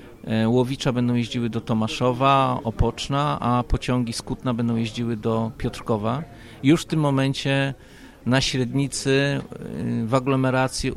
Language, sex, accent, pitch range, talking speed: Polish, male, native, 115-135 Hz, 115 wpm